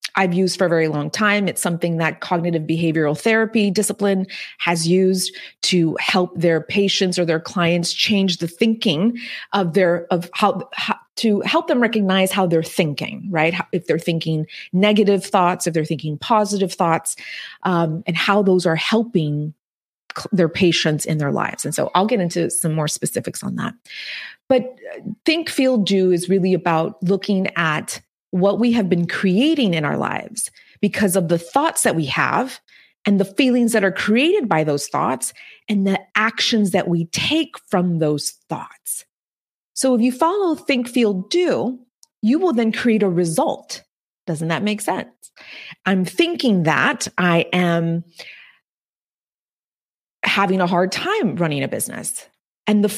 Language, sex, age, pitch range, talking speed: English, female, 30-49, 170-215 Hz, 165 wpm